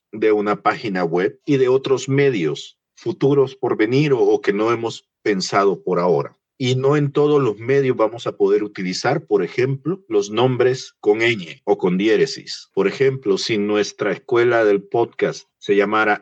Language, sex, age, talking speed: Spanish, male, 50-69, 175 wpm